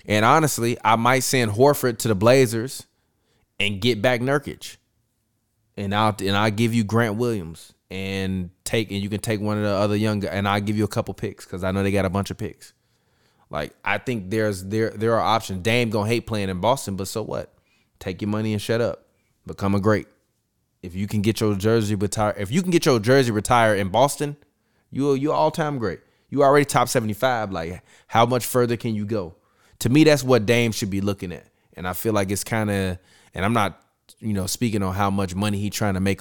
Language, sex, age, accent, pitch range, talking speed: English, male, 20-39, American, 95-115 Hz, 230 wpm